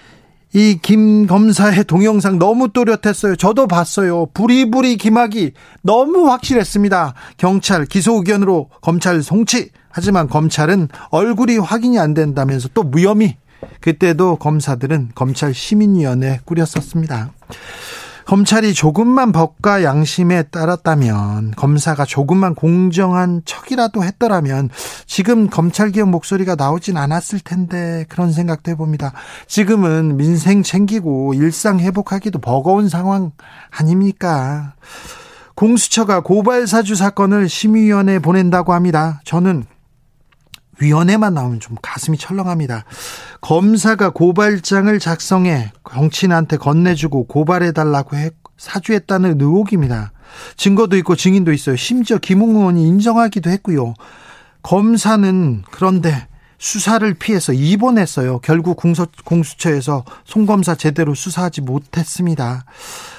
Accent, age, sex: native, 40-59, male